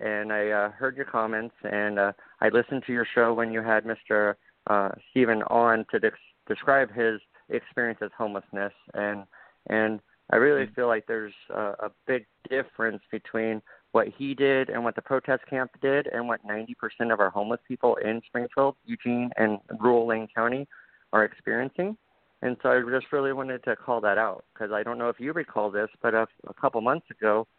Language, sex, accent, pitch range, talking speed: English, male, American, 110-125 Hz, 190 wpm